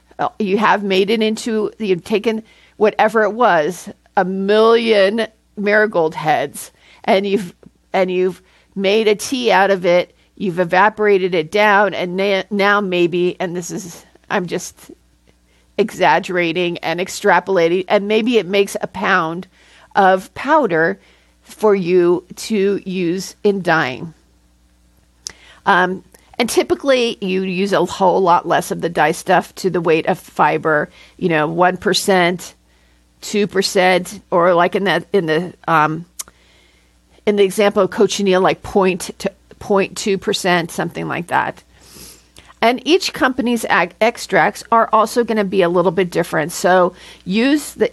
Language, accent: English, American